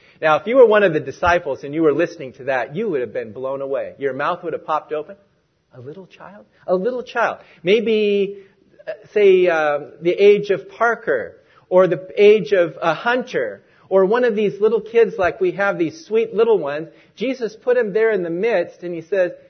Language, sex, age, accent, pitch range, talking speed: English, male, 40-59, American, 170-275 Hz, 210 wpm